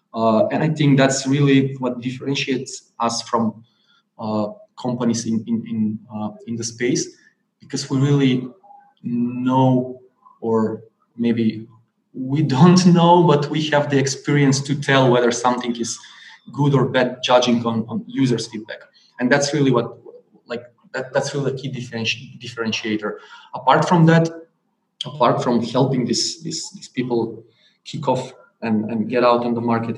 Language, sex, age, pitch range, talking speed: English, male, 20-39, 115-145 Hz, 150 wpm